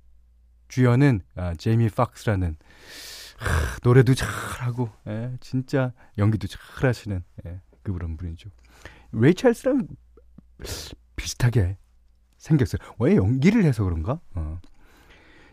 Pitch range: 95-155 Hz